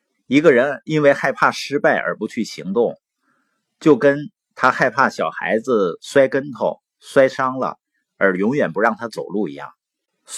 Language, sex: Chinese, male